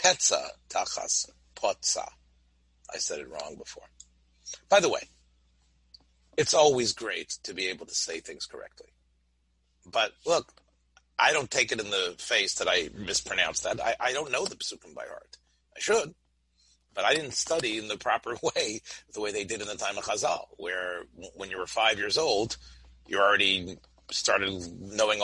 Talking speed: 165 wpm